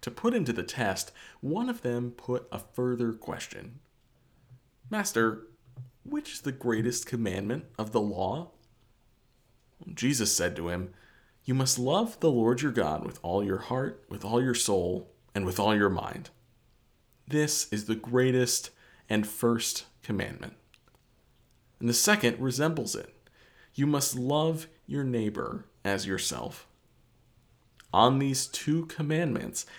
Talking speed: 135 wpm